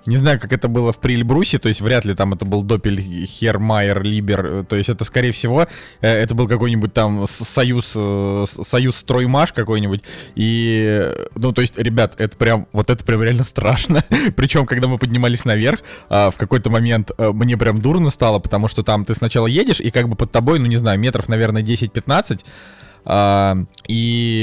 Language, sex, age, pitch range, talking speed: Russian, male, 20-39, 105-130 Hz, 180 wpm